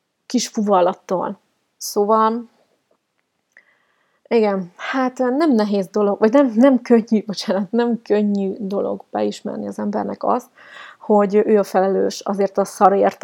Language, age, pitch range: Hungarian, 30-49, 195-225 Hz